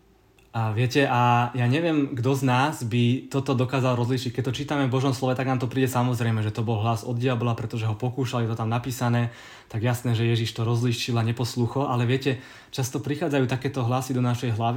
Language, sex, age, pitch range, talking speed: Czech, male, 20-39, 120-130 Hz, 210 wpm